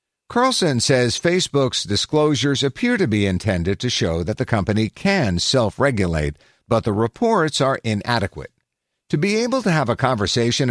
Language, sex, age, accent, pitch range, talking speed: English, male, 50-69, American, 95-140 Hz, 150 wpm